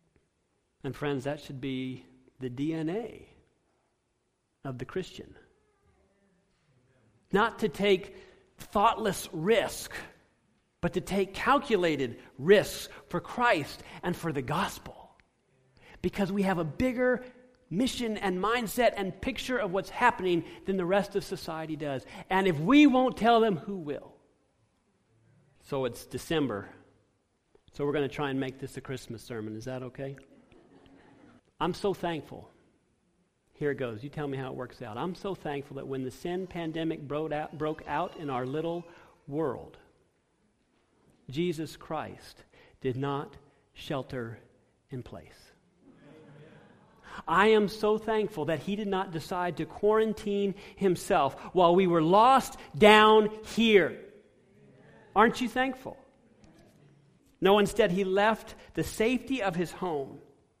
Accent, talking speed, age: American, 135 wpm, 50-69